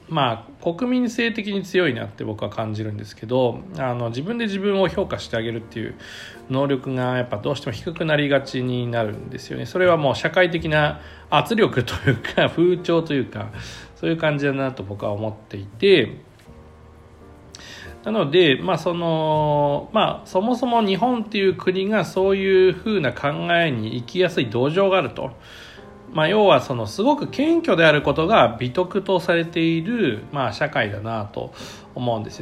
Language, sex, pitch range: Japanese, male, 115-195 Hz